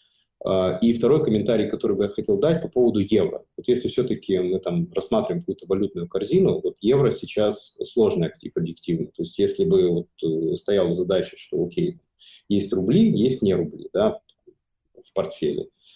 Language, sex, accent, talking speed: Russian, male, native, 160 wpm